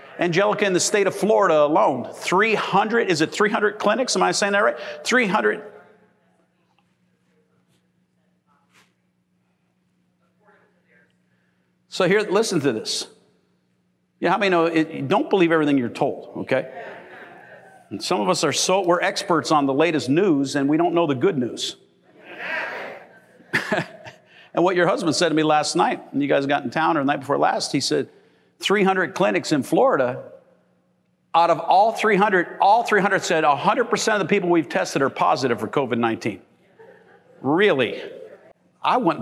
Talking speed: 145 wpm